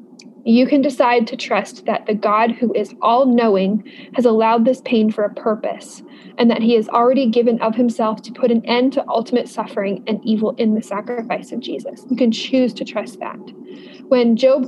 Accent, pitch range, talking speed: American, 215-250 Hz, 195 wpm